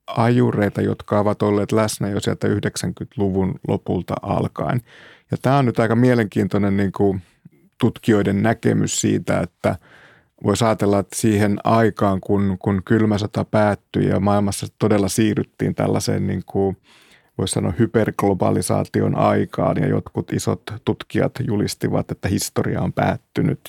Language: Finnish